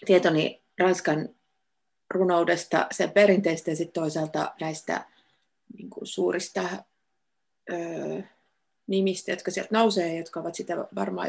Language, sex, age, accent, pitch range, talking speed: Finnish, female, 30-49, native, 170-215 Hz, 95 wpm